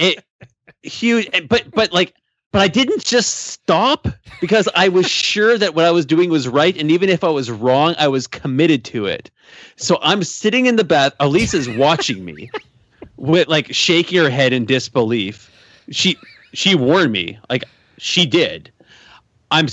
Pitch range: 115-170 Hz